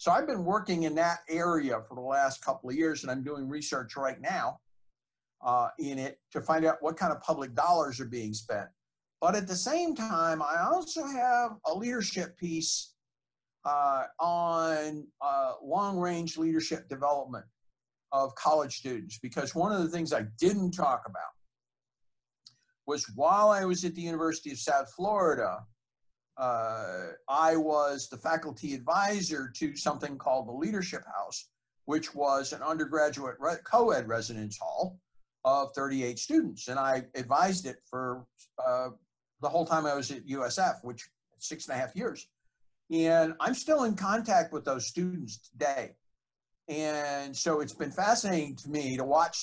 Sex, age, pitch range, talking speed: male, 50-69, 135-180 Hz, 165 wpm